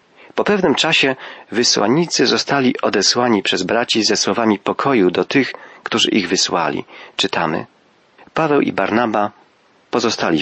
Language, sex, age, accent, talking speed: Polish, male, 40-59, native, 120 wpm